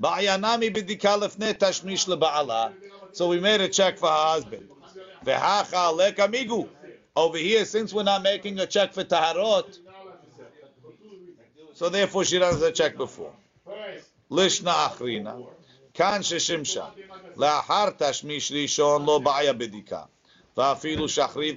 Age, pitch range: 50-69, 145-190 Hz